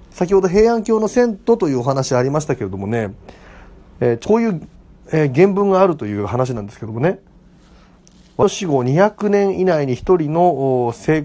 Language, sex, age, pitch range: Japanese, male, 40-59, 130-190 Hz